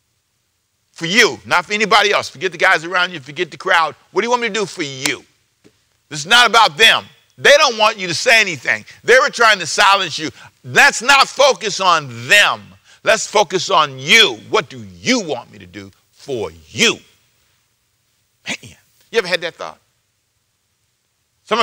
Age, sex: 50-69, male